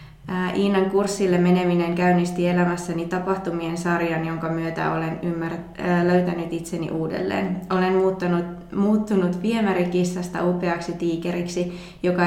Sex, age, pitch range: female, 20-39, 165-185 Hz